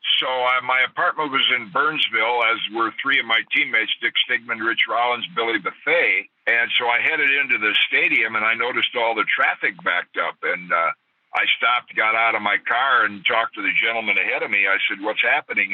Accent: American